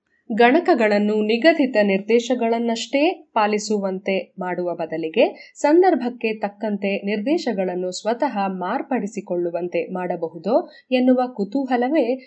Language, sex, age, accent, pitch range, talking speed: Kannada, female, 20-39, native, 190-260 Hz, 70 wpm